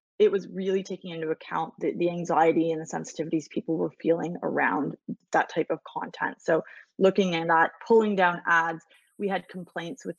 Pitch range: 165-210 Hz